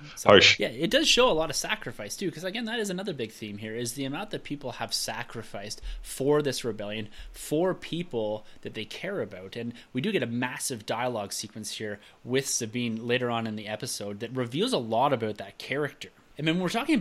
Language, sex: English, male